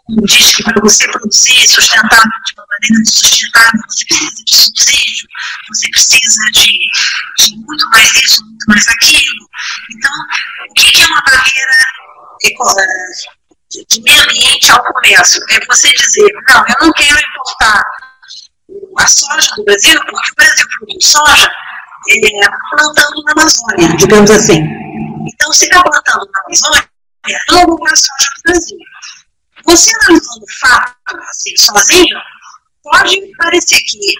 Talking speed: 145 wpm